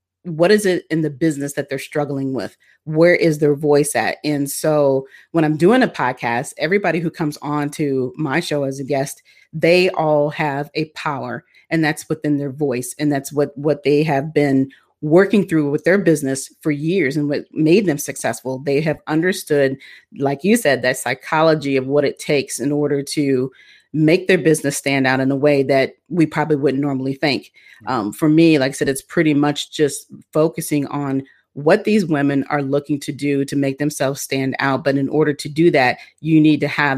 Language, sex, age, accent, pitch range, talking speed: English, female, 40-59, American, 140-155 Hz, 200 wpm